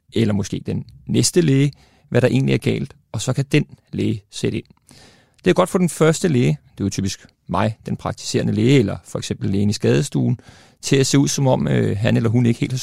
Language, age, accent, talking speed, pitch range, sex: Danish, 30-49, native, 235 wpm, 105-130 Hz, male